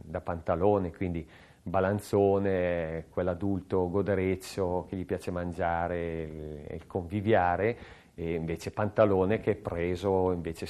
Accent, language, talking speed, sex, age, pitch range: native, Italian, 105 wpm, male, 40-59, 90-105 Hz